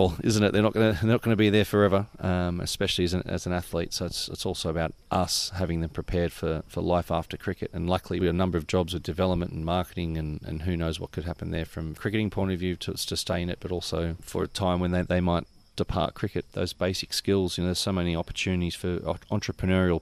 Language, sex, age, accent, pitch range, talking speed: English, male, 30-49, Australian, 85-95 Hz, 245 wpm